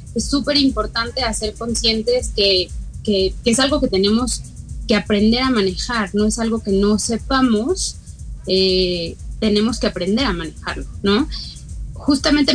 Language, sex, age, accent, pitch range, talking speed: Spanish, female, 20-39, Mexican, 190-230 Hz, 140 wpm